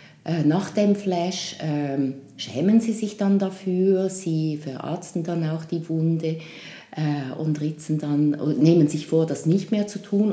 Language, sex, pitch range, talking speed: German, female, 155-195 Hz, 155 wpm